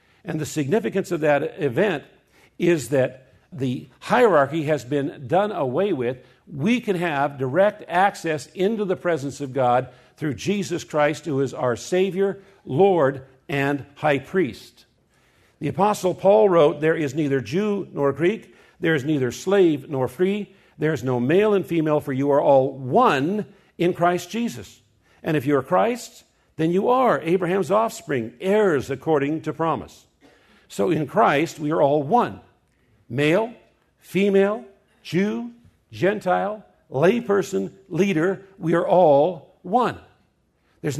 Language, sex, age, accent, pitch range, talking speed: English, male, 50-69, American, 145-195 Hz, 145 wpm